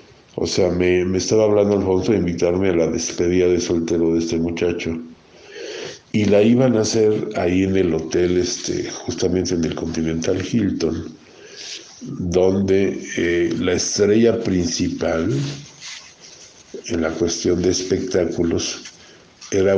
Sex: male